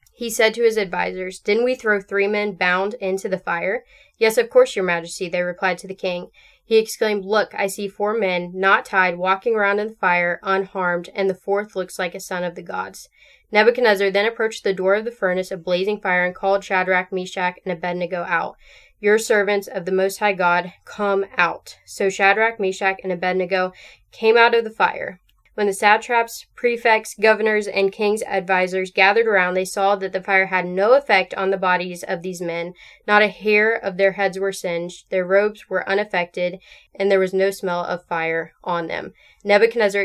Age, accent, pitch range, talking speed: 10-29, American, 180-210 Hz, 200 wpm